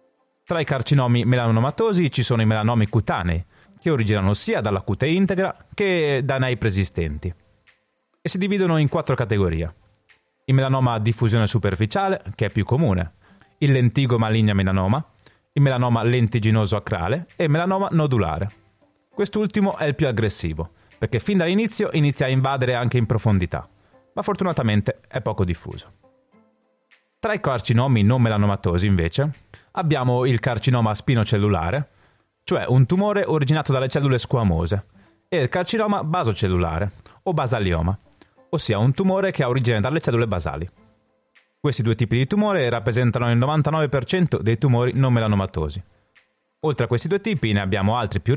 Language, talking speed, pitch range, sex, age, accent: Italian, 145 wpm, 105-155 Hz, male, 30-49, native